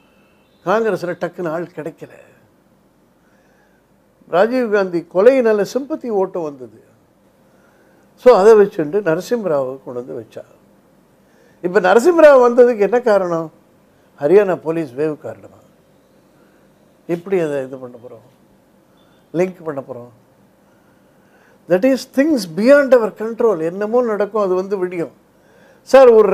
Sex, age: male, 60-79